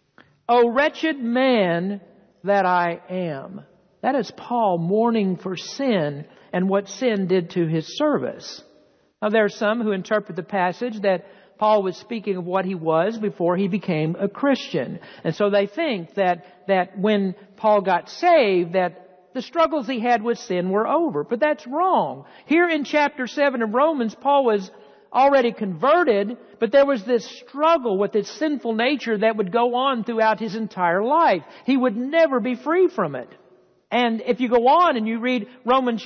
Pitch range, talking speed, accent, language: 200-275 Hz, 175 wpm, American, English